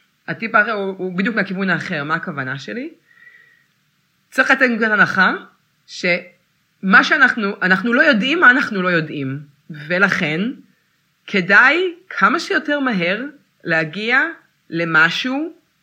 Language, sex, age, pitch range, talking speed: Hebrew, female, 30-49, 165-260 Hz, 115 wpm